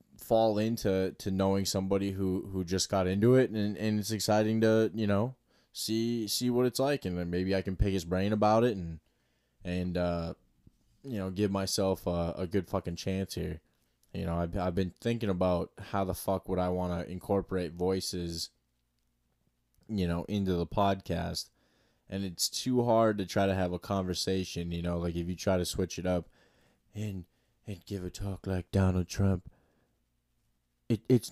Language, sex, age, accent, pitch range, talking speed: English, male, 20-39, American, 90-115 Hz, 185 wpm